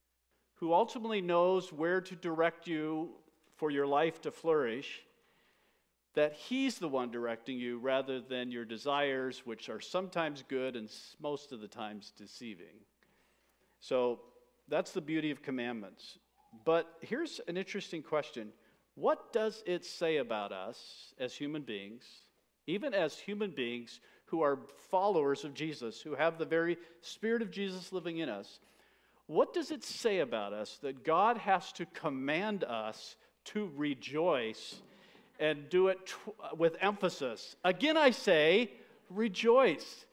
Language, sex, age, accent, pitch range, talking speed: English, male, 50-69, American, 135-215 Hz, 140 wpm